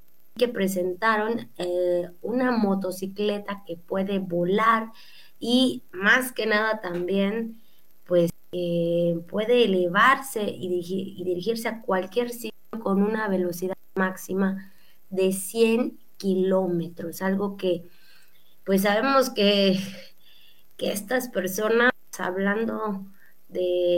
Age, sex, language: 20-39, female, Spanish